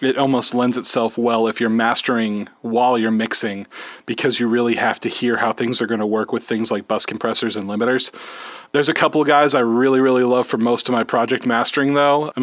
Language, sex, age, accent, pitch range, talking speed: English, male, 30-49, American, 115-135 Hz, 225 wpm